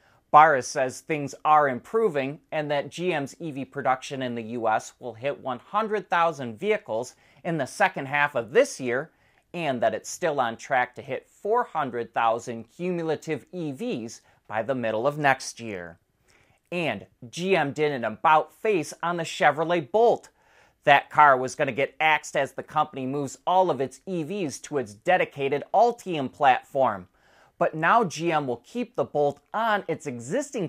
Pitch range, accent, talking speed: 125-170 Hz, American, 155 wpm